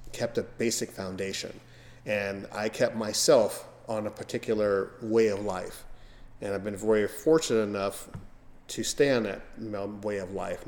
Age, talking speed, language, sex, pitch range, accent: 30-49, 150 wpm, English, male, 100-125 Hz, American